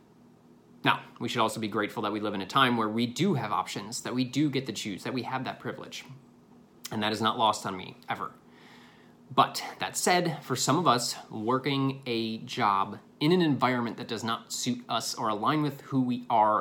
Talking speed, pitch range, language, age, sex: 215 wpm, 120-150 Hz, English, 30-49, male